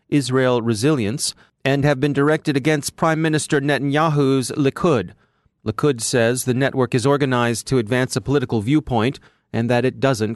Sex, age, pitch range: male, 30-49, 120-150 Hz